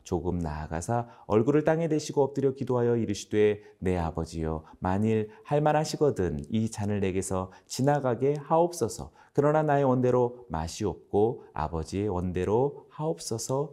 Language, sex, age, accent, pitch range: Korean, male, 30-49, native, 95-135 Hz